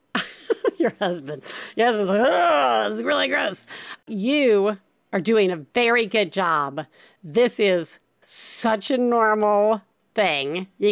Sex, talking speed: female, 125 wpm